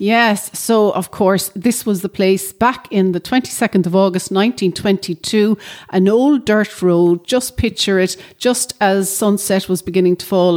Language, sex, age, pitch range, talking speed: English, female, 40-59, 175-215 Hz, 165 wpm